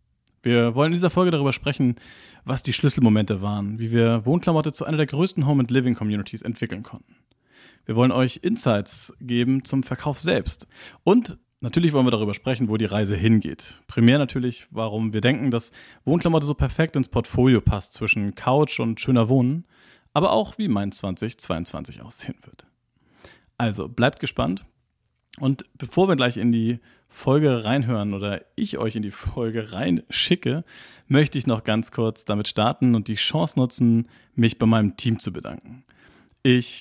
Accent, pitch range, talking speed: German, 110-135 Hz, 160 wpm